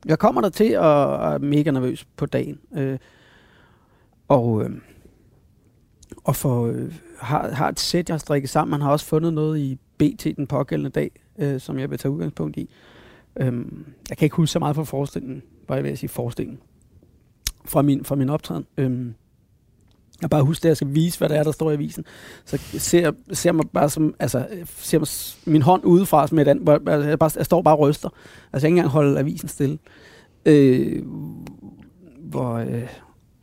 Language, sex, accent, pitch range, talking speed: Danish, male, native, 130-155 Hz, 200 wpm